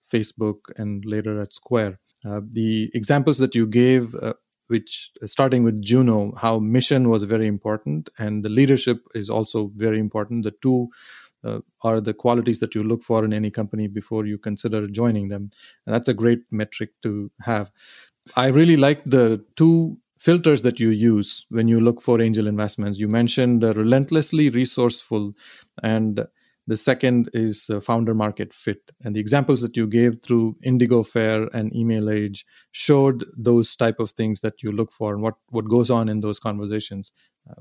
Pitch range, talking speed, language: 110-130 Hz, 175 wpm, English